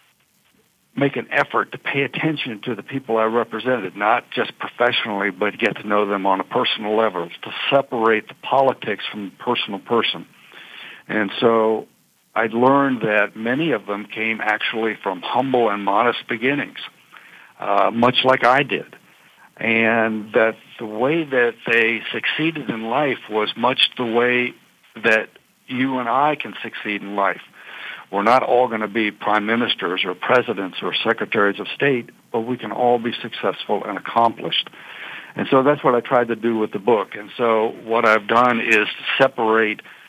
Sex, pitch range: male, 110-125 Hz